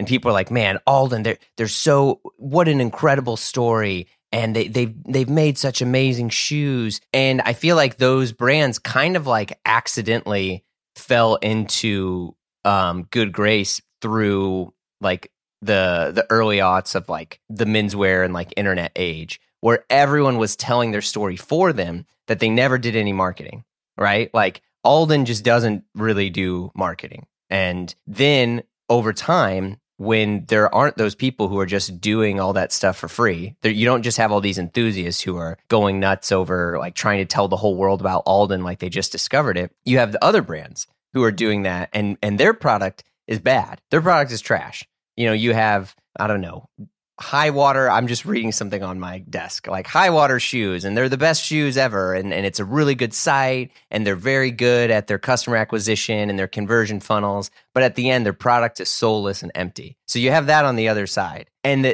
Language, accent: English, American